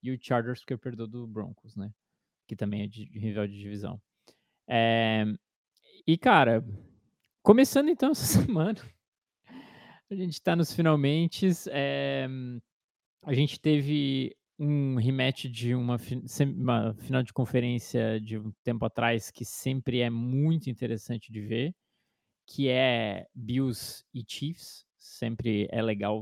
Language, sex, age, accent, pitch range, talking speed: Portuguese, male, 20-39, Brazilian, 115-140 Hz, 135 wpm